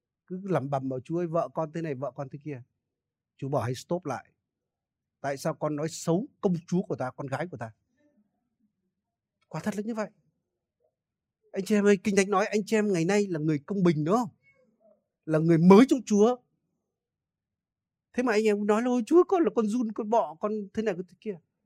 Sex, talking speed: male, 215 wpm